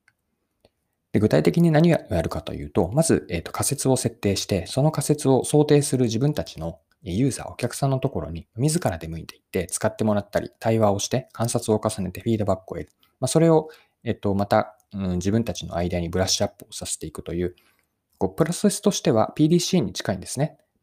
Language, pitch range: Japanese, 95-145 Hz